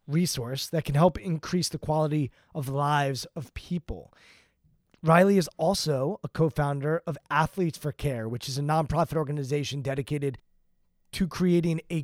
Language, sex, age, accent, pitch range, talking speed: English, male, 30-49, American, 140-170 Hz, 155 wpm